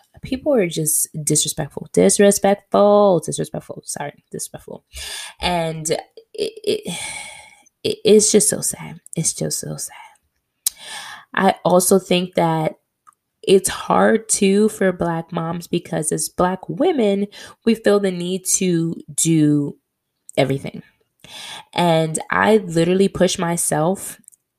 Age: 10-29